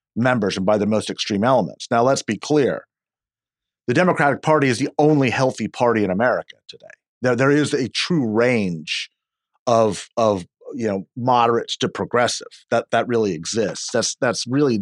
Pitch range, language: 120-155 Hz, English